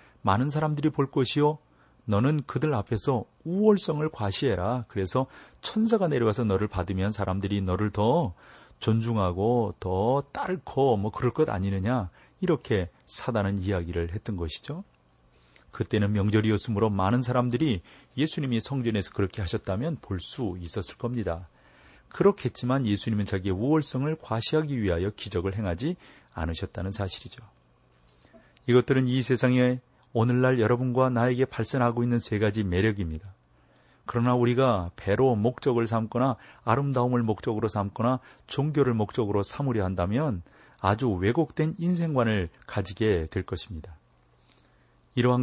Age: 40-59